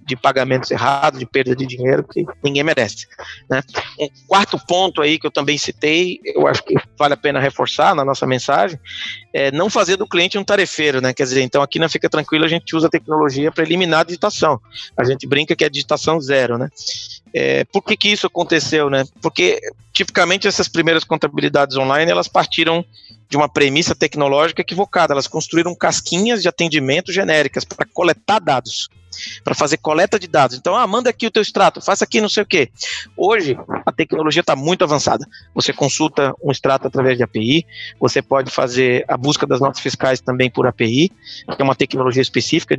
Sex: male